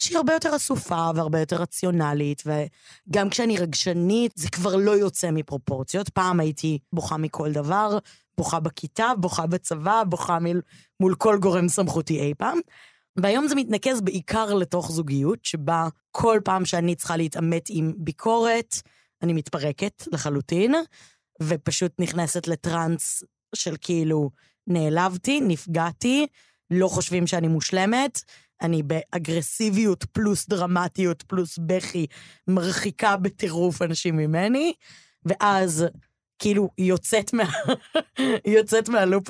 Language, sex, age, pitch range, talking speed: Hebrew, female, 20-39, 165-205 Hz, 115 wpm